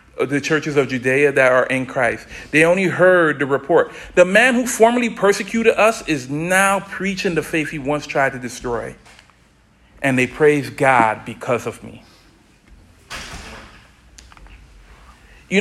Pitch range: 145-195 Hz